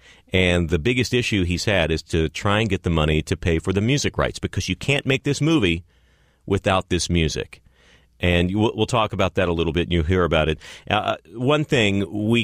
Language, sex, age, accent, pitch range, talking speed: English, male, 40-59, American, 80-105 Hz, 215 wpm